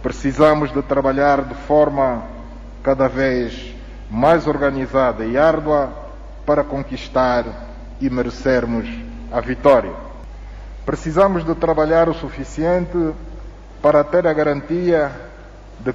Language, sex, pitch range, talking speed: Portuguese, male, 130-155 Hz, 100 wpm